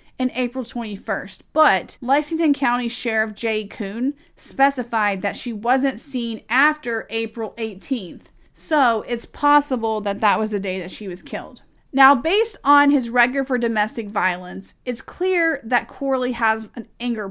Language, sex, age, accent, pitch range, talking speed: English, female, 40-59, American, 210-280 Hz, 155 wpm